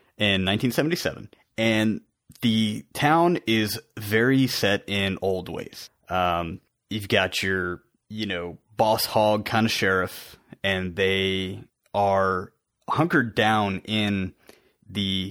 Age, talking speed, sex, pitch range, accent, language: 30-49, 115 wpm, male, 95-115 Hz, American, English